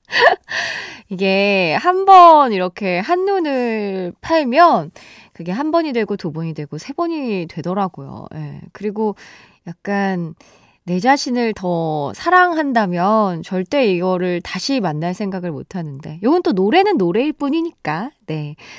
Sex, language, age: female, Korean, 20-39